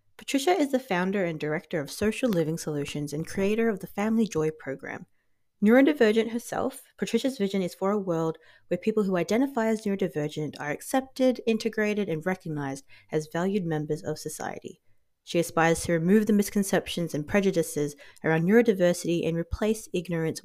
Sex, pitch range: female, 160-225 Hz